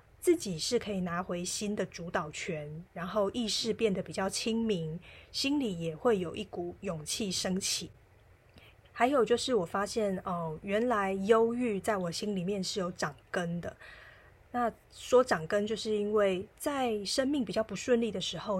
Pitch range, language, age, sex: 180-230 Hz, Chinese, 20-39, female